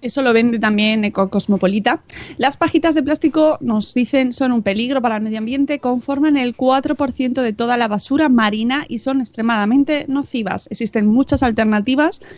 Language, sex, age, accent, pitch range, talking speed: Spanish, female, 30-49, Spanish, 220-280 Hz, 165 wpm